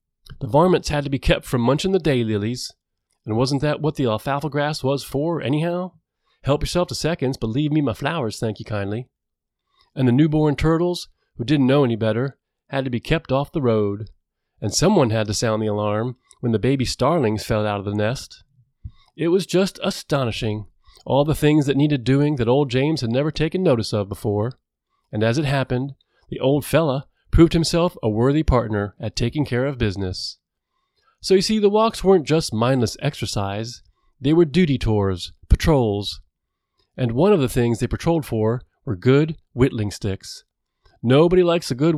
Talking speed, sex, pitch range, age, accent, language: 185 wpm, male, 110-155 Hz, 30-49, American, English